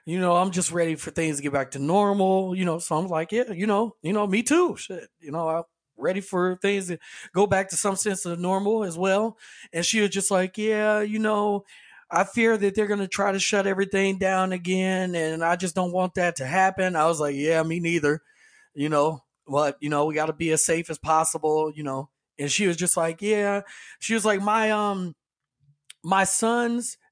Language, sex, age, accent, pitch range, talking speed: English, male, 30-49, American, 165-220 Hz, 230 wpm